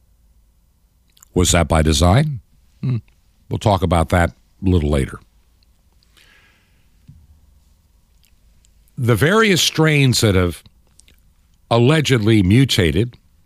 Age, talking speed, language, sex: 60-79, 80 wpm, English, male